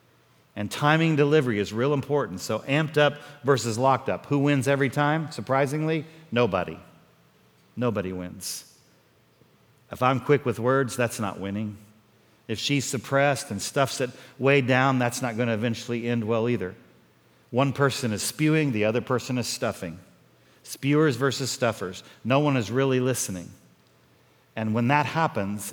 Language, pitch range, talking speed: English, 110-140 Hz, 150 wpm